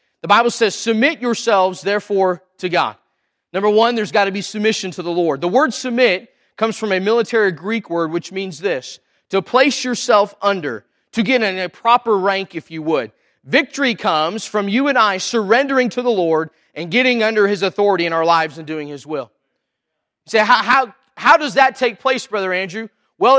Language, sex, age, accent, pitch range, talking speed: English, male, 30-49, American, 195-255 Hz, 200 wpm